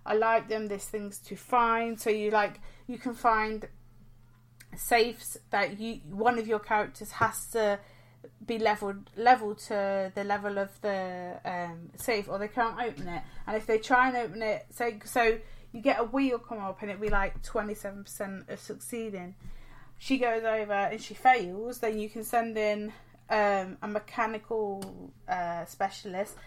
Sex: female